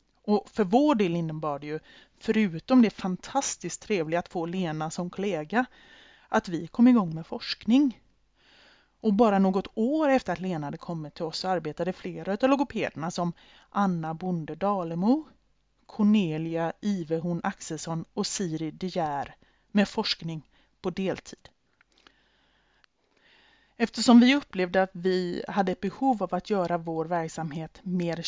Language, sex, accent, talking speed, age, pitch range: Swedish, female, native, 135 wpm, 30-49, 165-210 Hz